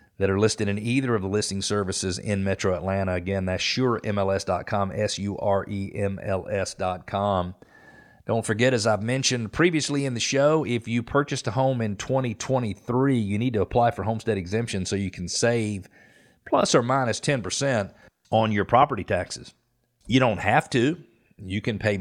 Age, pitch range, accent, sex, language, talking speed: 40-59, 95-115 Hz, American, male, English, 175 wpm